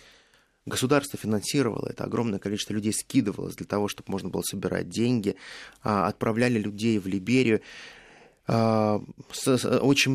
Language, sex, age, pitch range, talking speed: Russian, male, 20-39, 100-125 Hz, 110 wpm